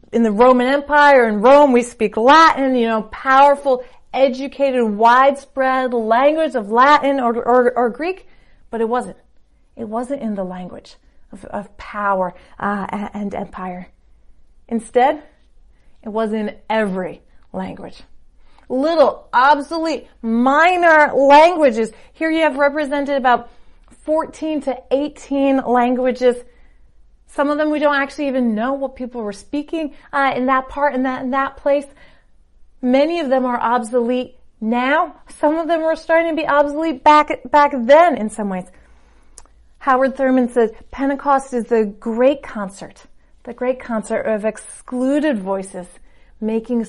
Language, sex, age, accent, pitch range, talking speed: English, female, 30-49, American, 220-280 Hz, 140 wpm